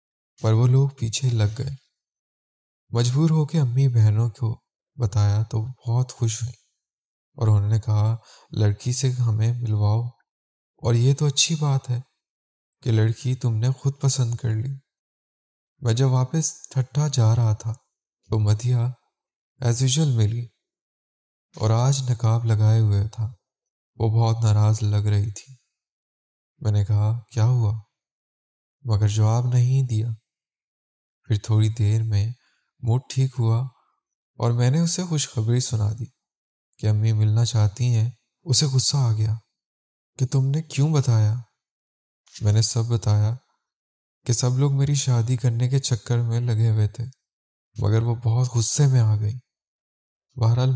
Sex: male